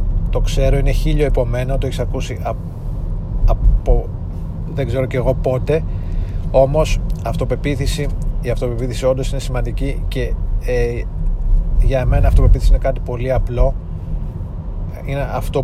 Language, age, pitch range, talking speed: Greek, 30-49, 95-130 Hz, 130 wpm